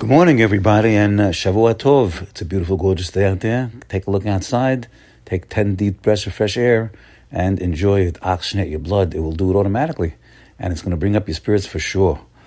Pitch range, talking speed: 90-115 Hz, 220 wpm